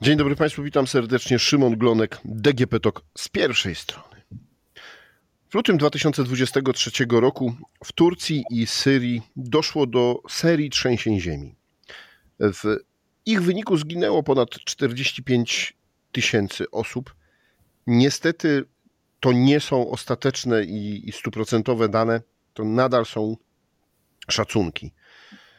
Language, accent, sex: Polish, native, male